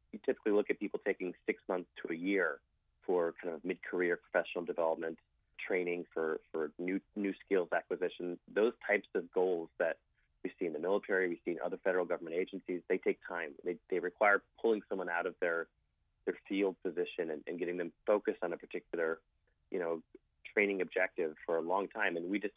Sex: male